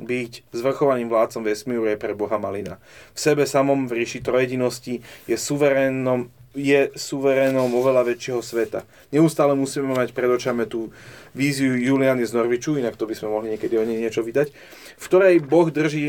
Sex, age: male, 30-49